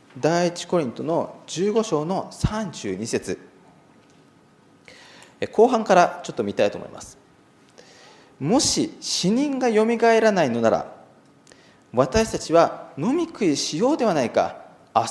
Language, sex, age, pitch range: Japanese, male, 40-59, 180-260 Hz